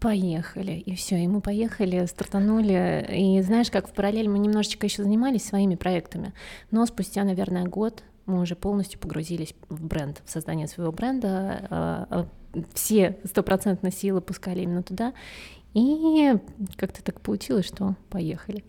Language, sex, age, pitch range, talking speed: Russian, female, 20-39, 190-215 Hz, 140 wpm